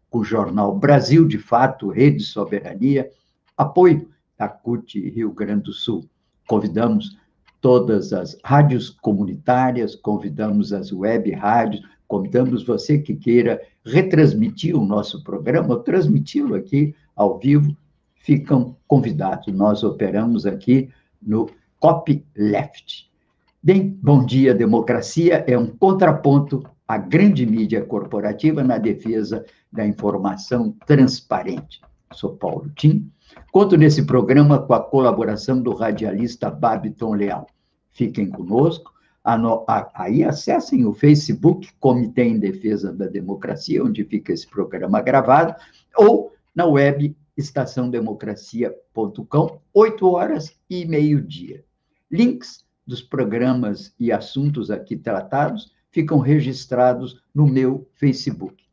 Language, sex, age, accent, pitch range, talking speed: Portuguese, male, 60-79, Brazilian, 110-155 Hz, 110 wpm